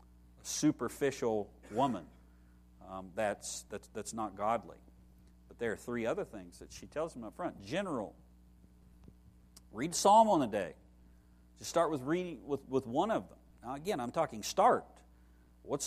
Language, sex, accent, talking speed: English, male, American, 160 wpm